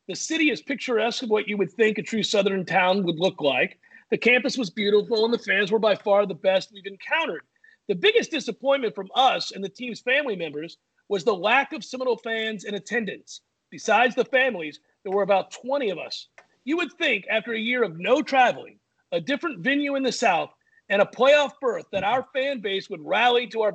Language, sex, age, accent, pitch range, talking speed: English, male, 40-59, American, 200-265 Hz, 210 wpm